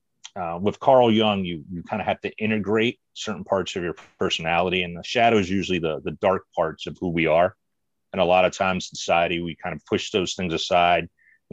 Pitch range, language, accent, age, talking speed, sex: 90-115 Hz, English, American, 40-59, 230 wpm, male